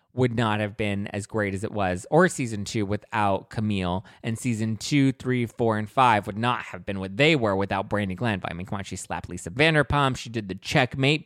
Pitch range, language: 105-140 Hz, English